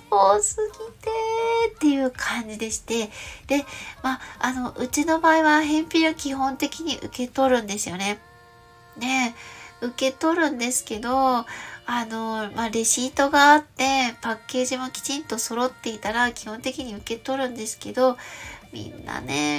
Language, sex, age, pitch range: Japanese, female, 20-39, 230-290 Hz